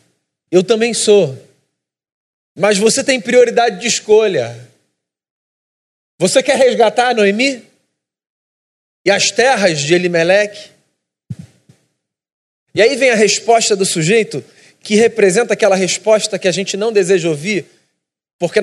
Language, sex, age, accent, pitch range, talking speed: Portuguese, male, 40-59, Brazilian, 180-220 Hz, 115 wpm